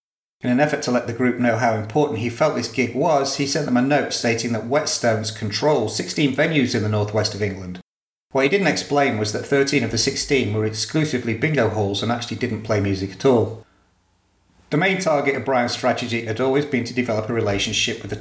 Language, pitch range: English, 105-135 Hz